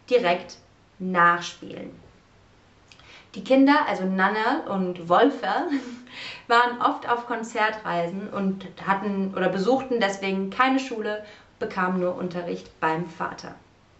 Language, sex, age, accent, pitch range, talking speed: German, female, 30-49, German, 175-240 Hz, 105 wpm